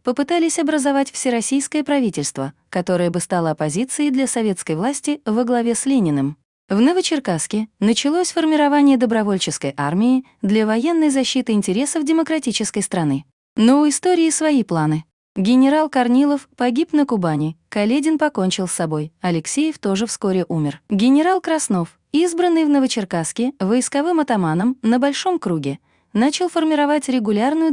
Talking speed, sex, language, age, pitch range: 125 wpm, female, Russian, 30-49, 185-285 Hz